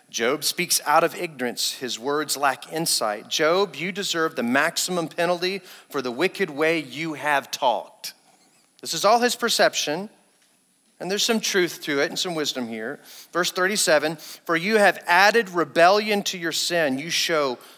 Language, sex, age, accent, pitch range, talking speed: English, male, 40-59, American, 120-165 Hz, 165 wpm